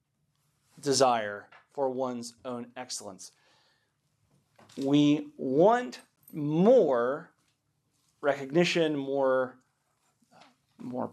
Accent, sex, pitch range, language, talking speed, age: American, male, 130-175 Hz, English, 60 wpm, 40-59